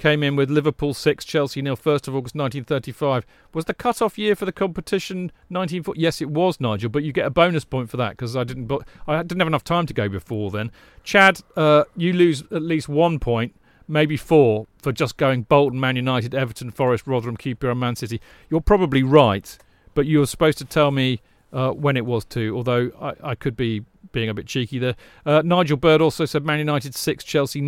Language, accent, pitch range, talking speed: English, British, 125-155 Hz, 220 wpm